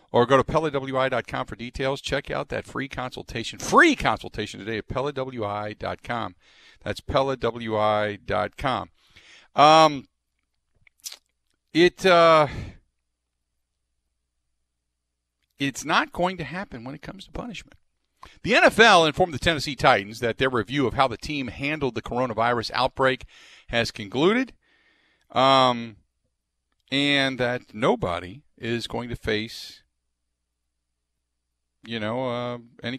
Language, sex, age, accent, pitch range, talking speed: English, male, 50-69, American, 105-140 Hz, 110 wpm